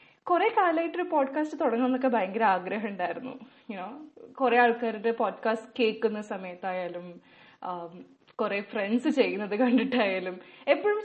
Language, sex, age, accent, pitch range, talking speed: Malayalam, female, 20-39, native, 220-285 Hz, 105 wpm